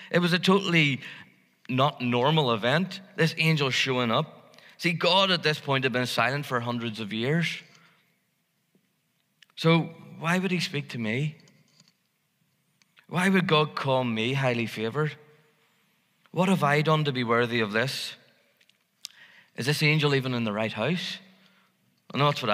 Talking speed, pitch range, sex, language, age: 155 wpm, 130-175 Hz, male, English, 20-39